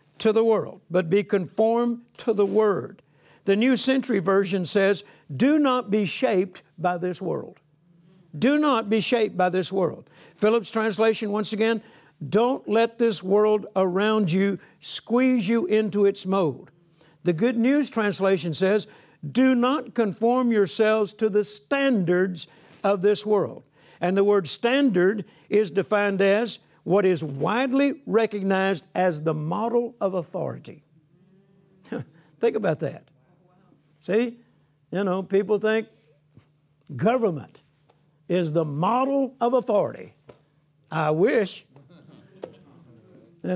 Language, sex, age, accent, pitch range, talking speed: English, male, 60-79, American, 165-225 Hz, 125 wpm